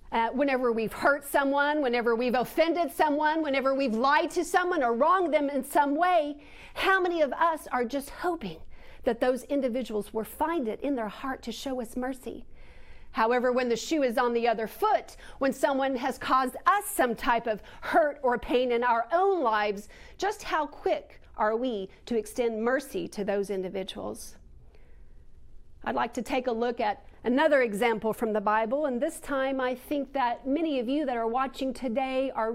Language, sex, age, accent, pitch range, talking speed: English, female, 40-59, American, 225-290 Hz, 185 wpm